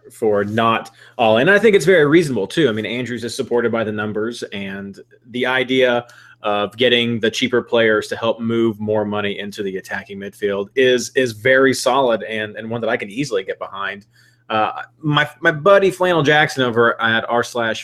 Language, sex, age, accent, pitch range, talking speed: English, male, 30-49, American, 105-130 Hz, 195 wpm